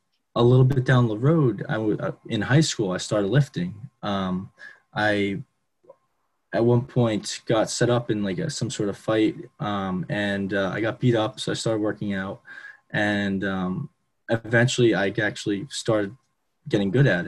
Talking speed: 175 wpm